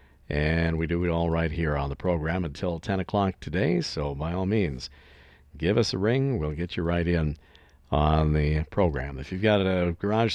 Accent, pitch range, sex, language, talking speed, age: American, 75-105 Hz, male, English, 205 wpm, 50-69